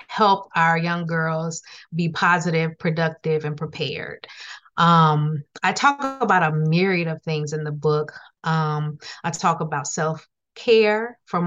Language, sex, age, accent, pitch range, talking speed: English, female, 30-49, American, 160-190 Hz, 135 wpm